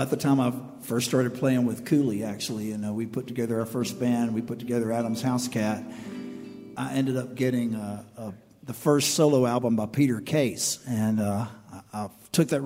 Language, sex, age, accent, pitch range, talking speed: English, male, 50-69, American, 110-130 Hz, 205 wpm